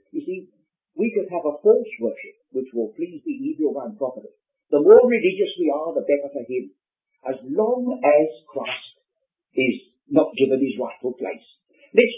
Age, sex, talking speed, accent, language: 60-79, male, 170 wpm, British, English